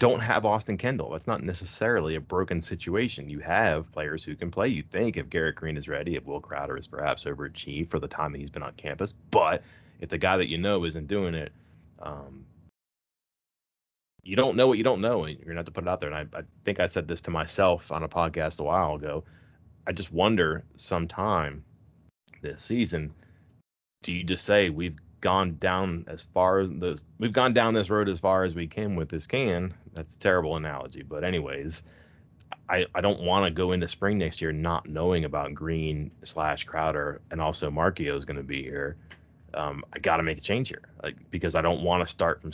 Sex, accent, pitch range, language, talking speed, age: male, American, 75-90 Hz, English, 215 wpm, 30-49